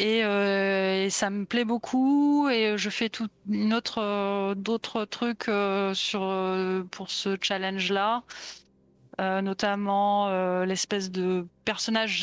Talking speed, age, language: 135 wpm, 20-39, French